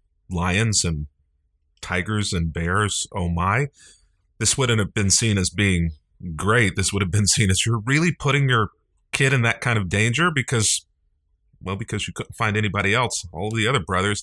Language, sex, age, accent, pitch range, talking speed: English, male, 40-59, American, 85-110 Hz, 180 wpm